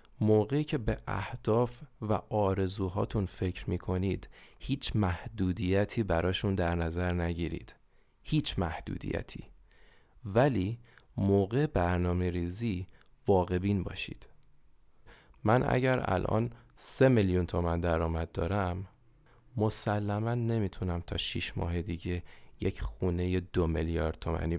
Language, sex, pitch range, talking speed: Persian, male, 90-115 Hz, 100 wpm